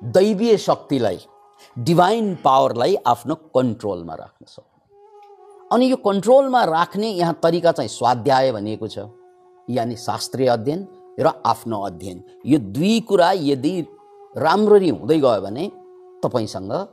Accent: Indian